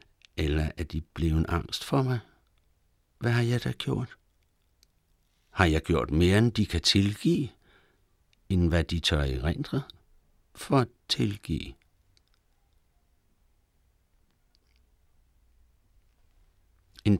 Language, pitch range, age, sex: Danish, 80-95 Hz, 60-79, male